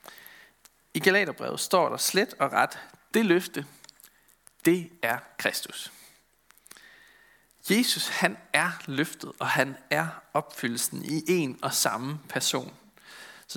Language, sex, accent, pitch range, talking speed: Danish, male, native, 150-195 Hz, 115 wpm